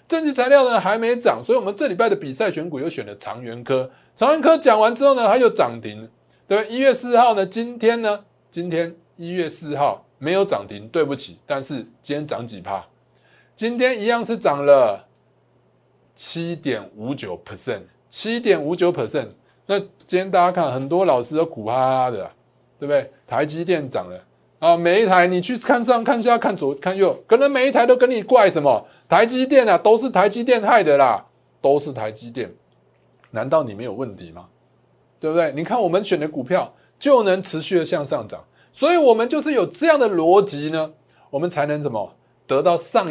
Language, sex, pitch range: Chinese, male, 140-235 Hz